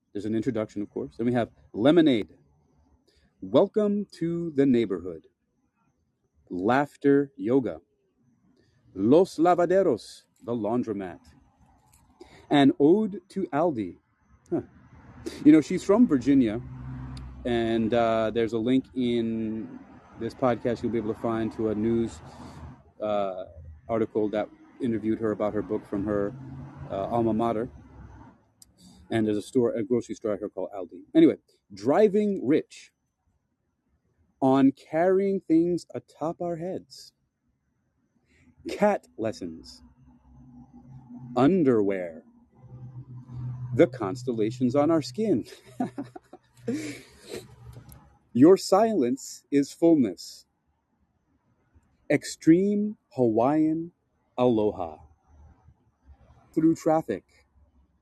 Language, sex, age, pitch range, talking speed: English, male, 30-49, 110-160 Hz, 95 wpm